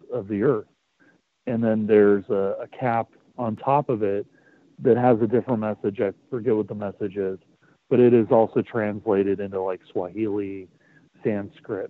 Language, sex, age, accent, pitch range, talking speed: English, male, 40-59, American, 105-120 Hz, 165 wpm